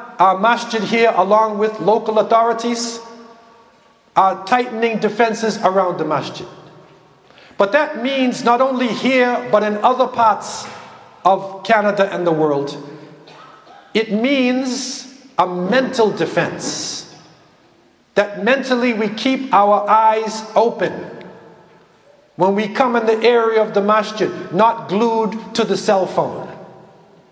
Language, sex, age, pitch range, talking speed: English, male, 50-69, 195-240 Hz, 120 wpm